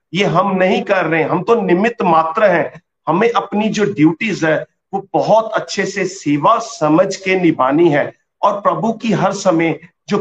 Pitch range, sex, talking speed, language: 155-205 Hz, male, 175 wpm, Hindi